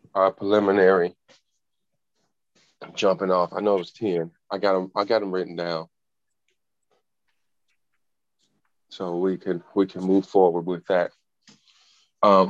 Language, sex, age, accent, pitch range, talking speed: English, male, 30-49, American, 90-100 Hz, 130 wpm